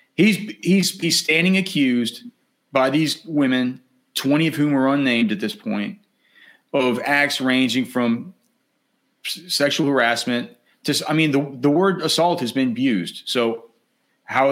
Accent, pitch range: American, 120-160 Hz